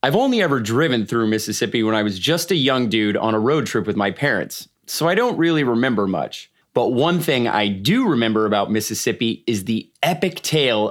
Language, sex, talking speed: English, male, 210 wpm